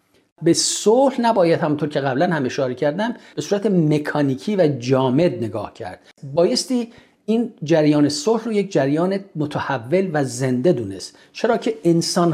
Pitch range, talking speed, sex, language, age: 135-175 Hz, 145 wpm, male, Persian, 50-69